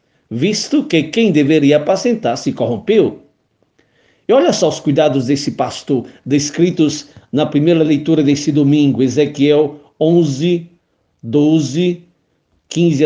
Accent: Brazilian